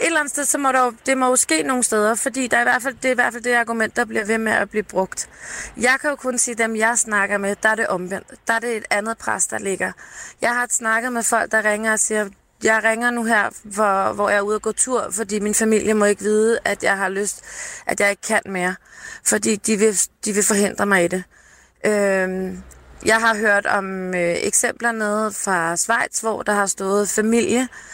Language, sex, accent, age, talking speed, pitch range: Danish, female, native, 20-39, 235 wpm, 200-235 Hz